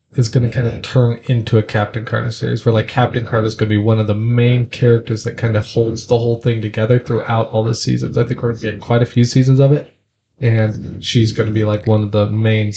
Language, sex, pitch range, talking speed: English, male, 110-125 Hz, 275 wpm